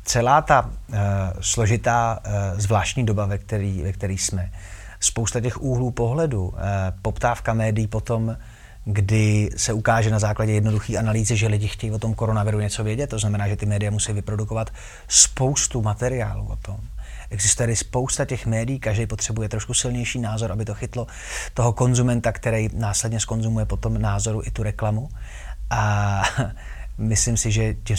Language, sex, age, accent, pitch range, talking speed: Czech, male, 30-49, native, 100-120 Hz, 150 wpm